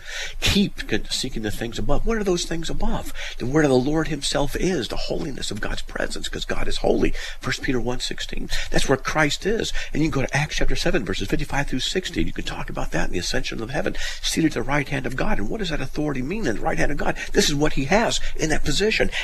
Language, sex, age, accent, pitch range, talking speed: English, male, 50-69, American, 100-155 Hz, 255 wpm